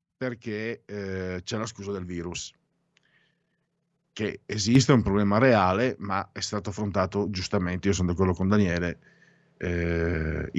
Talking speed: 135 wpm